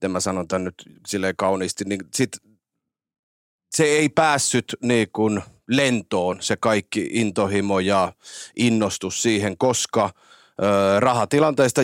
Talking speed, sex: 110 wpm, male